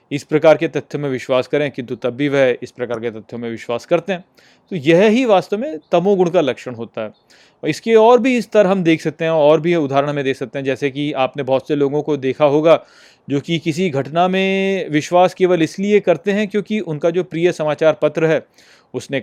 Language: Hindi